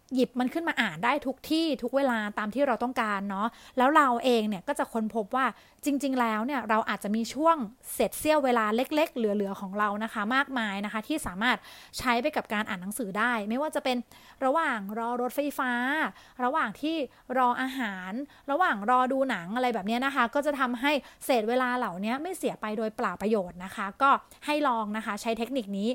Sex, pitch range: female, 225-280 Hz